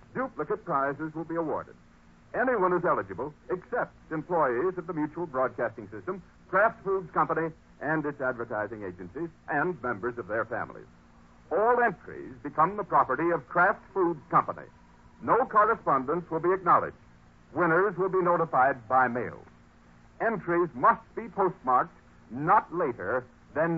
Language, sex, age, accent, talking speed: English, male, 60-79, American, 135 wpm